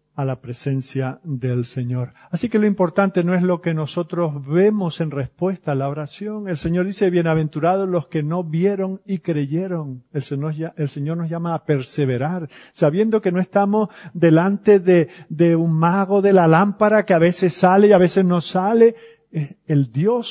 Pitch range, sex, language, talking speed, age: 145-190 Hz, male, Spanish, 180 wpm, 50-69